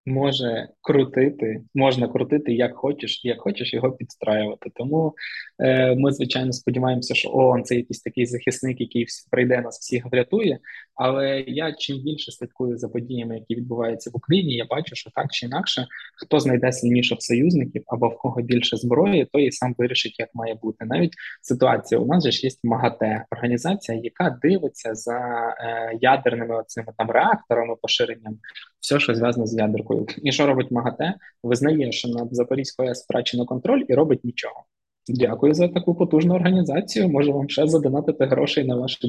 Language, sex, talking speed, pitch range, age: Ukrainian, male, 165 wpm, 120-135 Hz, 20-39